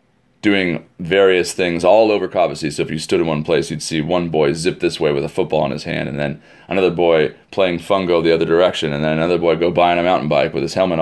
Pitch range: 80-100 Hz